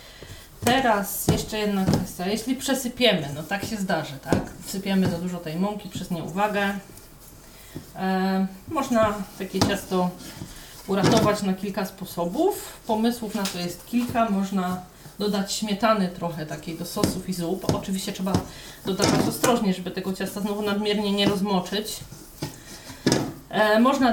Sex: female